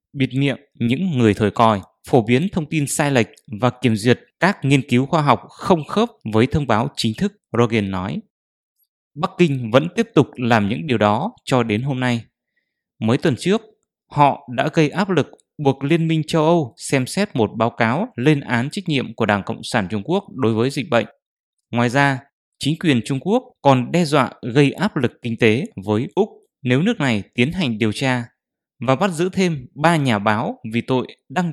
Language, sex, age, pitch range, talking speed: English, male, 20-39, 115-155 Hz, 205 wpm